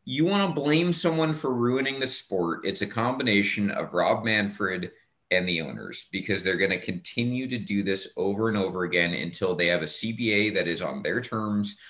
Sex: male